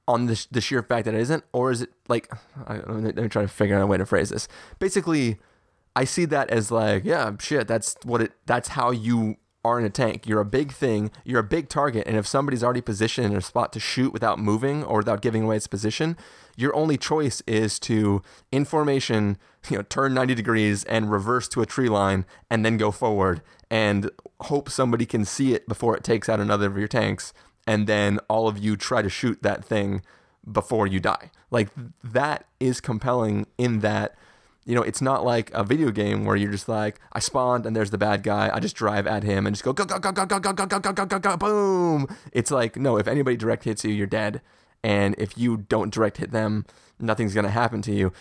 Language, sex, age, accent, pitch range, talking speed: English, male, 20-39, American, 105-130 Hz, 230 wpm